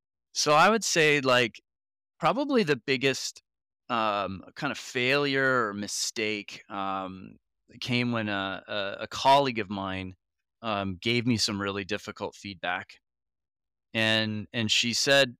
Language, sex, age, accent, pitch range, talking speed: English, male, 30-49, American, 100-135 Hz, 130 wpm